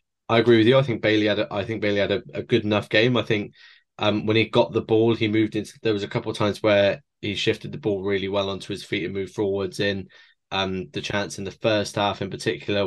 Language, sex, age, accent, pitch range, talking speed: English, male, 10-29, British, 95-110 Hz, 270 wpm